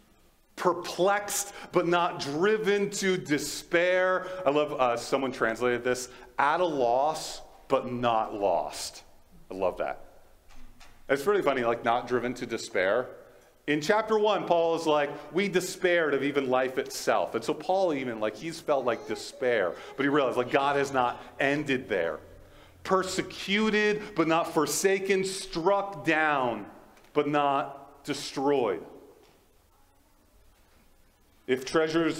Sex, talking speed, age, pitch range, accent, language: male, 130 wpm, 40-59, 125-185 Hz, American, English